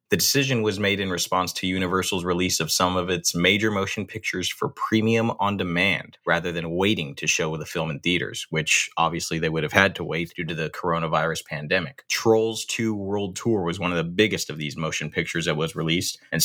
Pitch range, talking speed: 85-100 Hz, 210 wpm